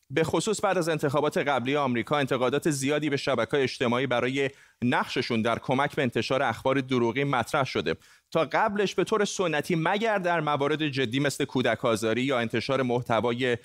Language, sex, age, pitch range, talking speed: Persian, male, 30-49, 125-165 Hz, 160 wpm